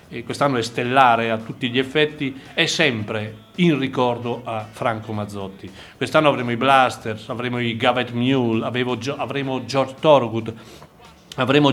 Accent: native